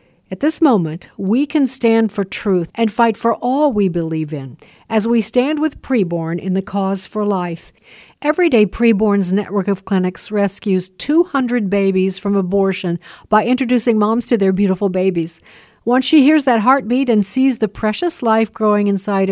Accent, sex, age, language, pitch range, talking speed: American, female, 50-69, English, 195-245 Hz, 170 wpm